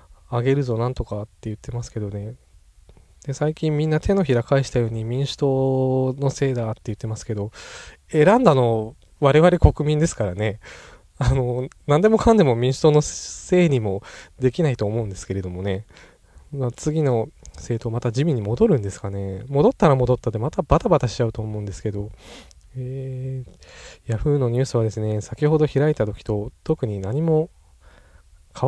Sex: male